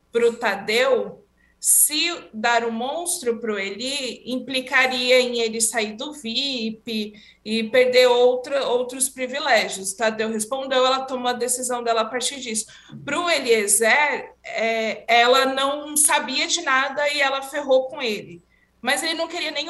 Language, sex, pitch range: Portuguese, female, 230-310 Hz